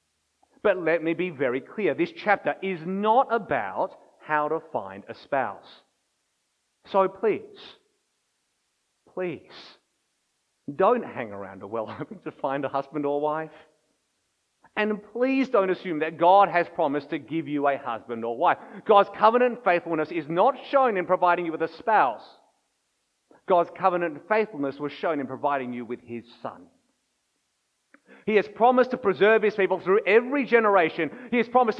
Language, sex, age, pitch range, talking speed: English, male, 30-49, 145-220 Hz, 155 wpm